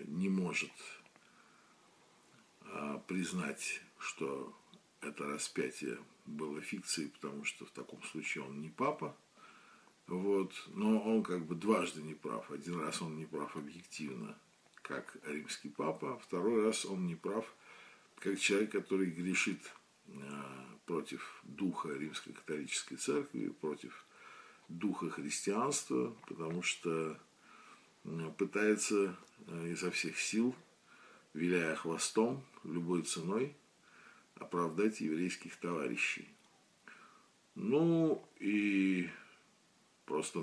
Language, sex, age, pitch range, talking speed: Russian, male, 50-69, 80-110 Hz, 100 wpm